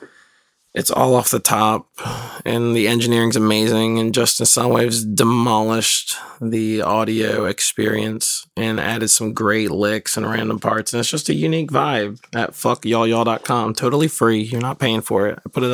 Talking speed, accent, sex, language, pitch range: 160 wpm, American, male, English, 105-125 Hz